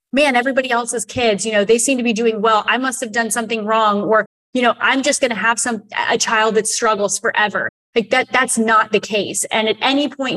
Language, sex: English, female